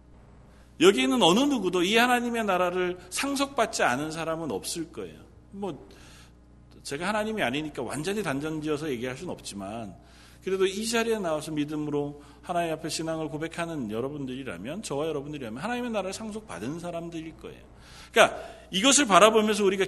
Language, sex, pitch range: Korean, male, 125-200 Hz